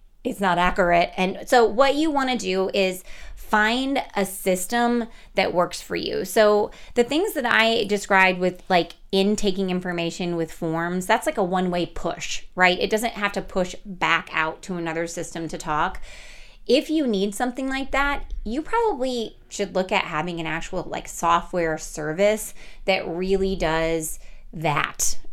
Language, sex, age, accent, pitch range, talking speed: English, female, 30-49, American, 170-205 Hz, 165 wpm